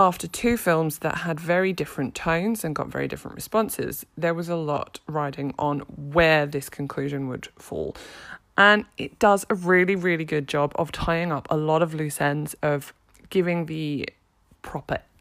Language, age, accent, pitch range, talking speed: English, 20-39, British, 145-180 Hz, 175 wpm